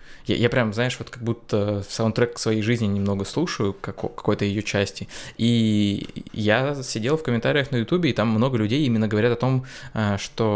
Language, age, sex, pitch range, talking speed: Russian, 20-39, male, 105-120 Hz, 190 wpm